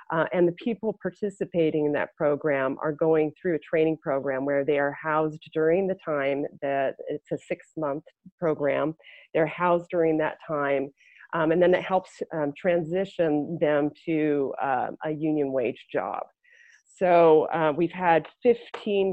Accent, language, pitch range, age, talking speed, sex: American, English, 150-180 Hz, 30-49, 160 wpm, female